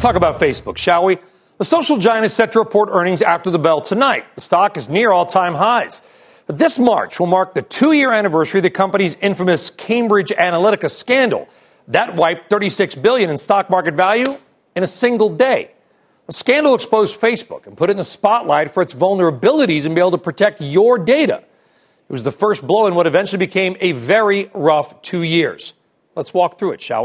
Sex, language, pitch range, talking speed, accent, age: male, English, 175-220 Hz, 195 wpm, American, 40-59